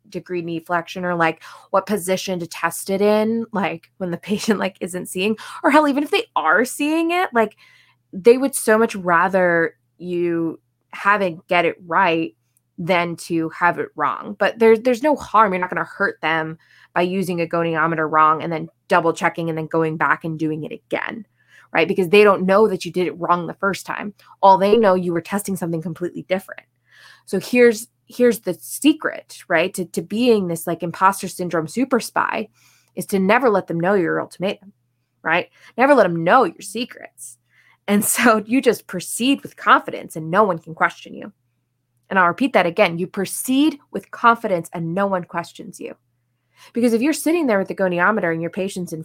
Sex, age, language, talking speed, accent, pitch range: female, 20-39, English, 200 wpm, American, 165-215 Hz